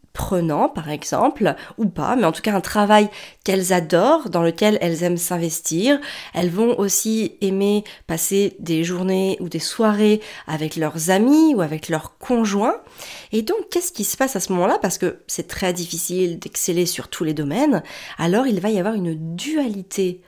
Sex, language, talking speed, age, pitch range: female, French, 180 wpm, 30-49, 195-275 Hz